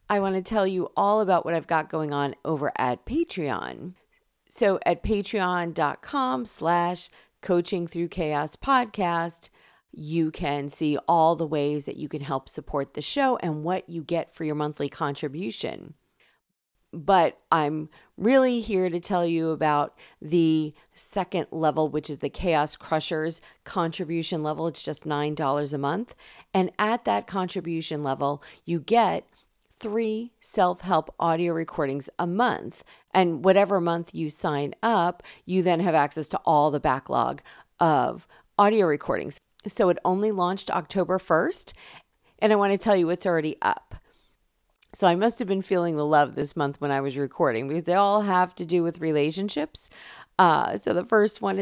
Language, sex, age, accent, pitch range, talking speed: English, female, 40-59, American, 150-190 Hz, 160 wpm